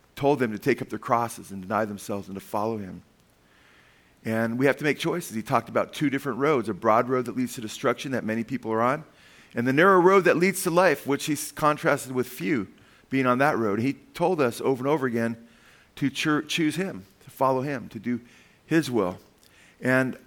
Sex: male